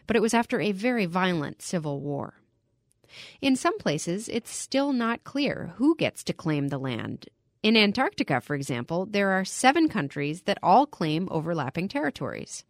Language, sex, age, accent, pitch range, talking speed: English, female, 30-49, American, 155-225 Hz, 165 wpm